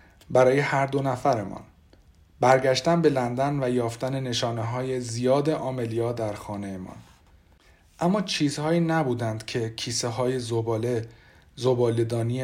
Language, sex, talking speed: Persian, male, 115 wpm